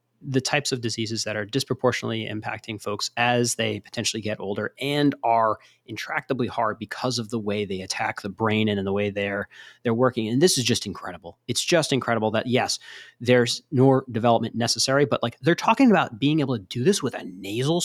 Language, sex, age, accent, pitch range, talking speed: English, male, 30-49, American, 110-140 Hz, 200 wpm